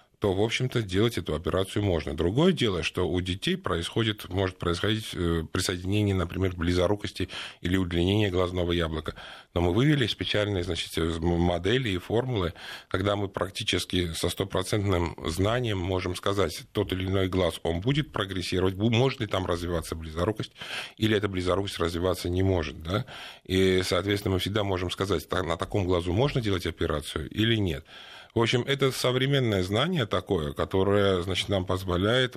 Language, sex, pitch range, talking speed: Russian, male, 85-105 Hz, 145 wpm